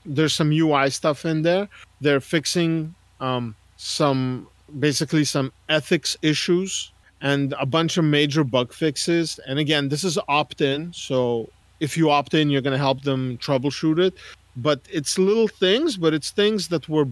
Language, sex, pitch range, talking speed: English, male, 130-160 Hz, 160 wpm